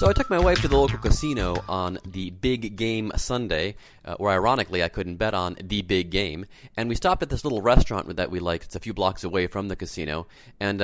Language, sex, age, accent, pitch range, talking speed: English, male, 30-49, American, 85-115 Hz, 240 wpm